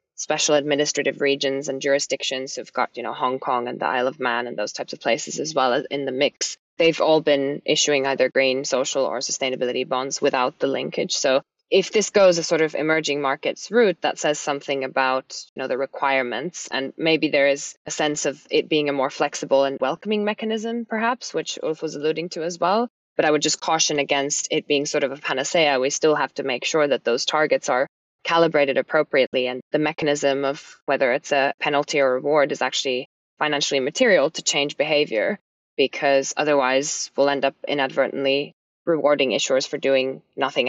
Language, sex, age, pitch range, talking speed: English, female, 20-39, 135-155 Hz, 195 wpm